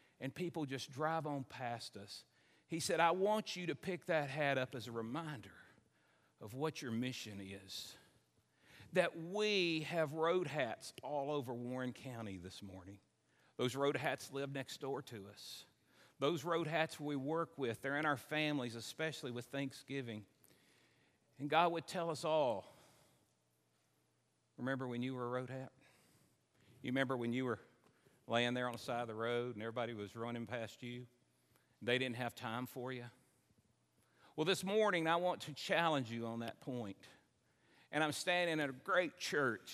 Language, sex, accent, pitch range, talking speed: English, male, American, 120-150 Hz, 170 wpm